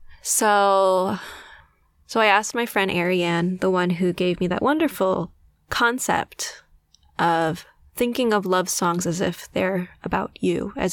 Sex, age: female, 20-39